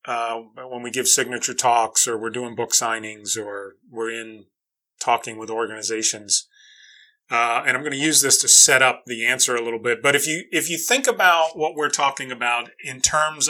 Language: English